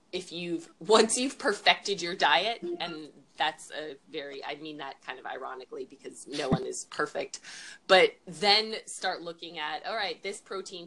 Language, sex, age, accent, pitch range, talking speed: English, female, 20-39, American, 155-210 Hz, 170 wpm